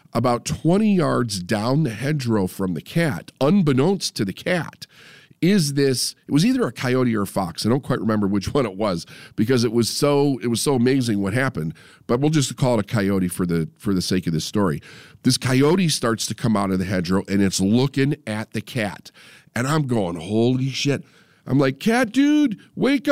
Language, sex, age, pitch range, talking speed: English, male, 50-69, 115-170 Hz, 210 wpm